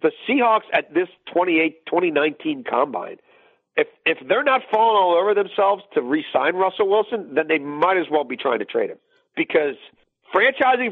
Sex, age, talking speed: male, 40-59, 165 wpm